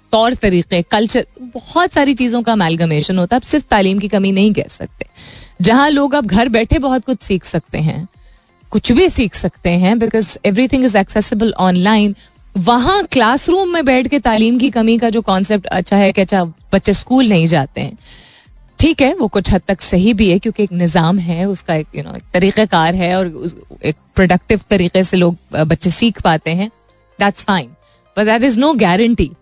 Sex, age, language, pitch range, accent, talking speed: female, 30-49, Hindi, 180-240 Hz, native, 190 wpm